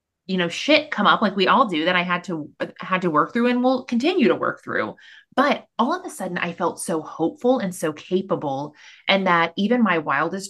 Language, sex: English, female